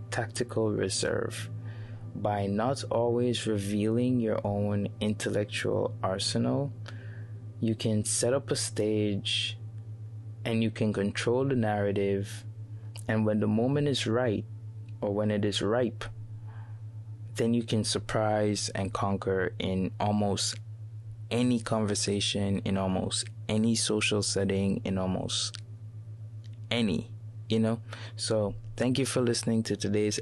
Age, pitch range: 20-39, 100-110 Hz